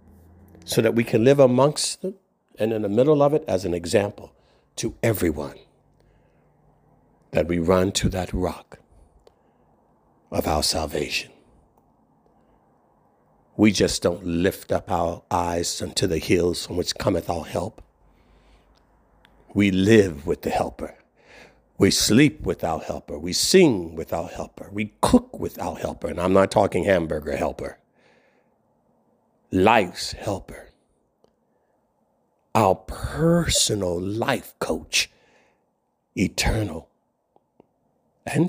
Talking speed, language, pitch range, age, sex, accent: 120 wpm, English, 85-120 Hz, 60-79, male, American